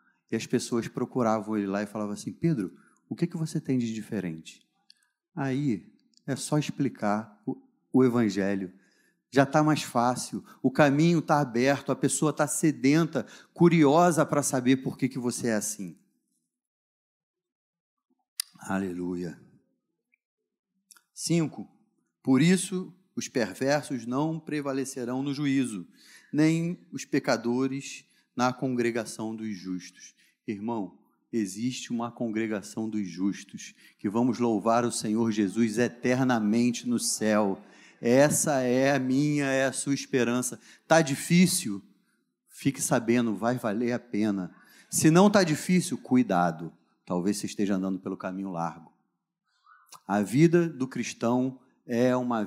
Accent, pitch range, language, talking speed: Brazilian, 110-150 Hz, Portuguese, 125 wpm